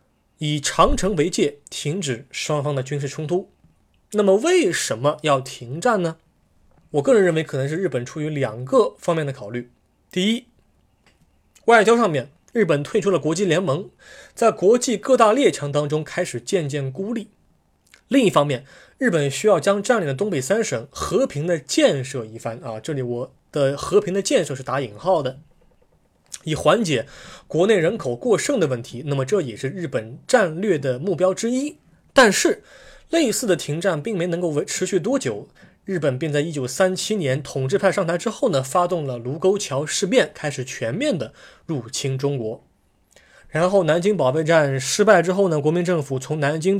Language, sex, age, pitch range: Chinese, male, 20-39, 135-190 Hz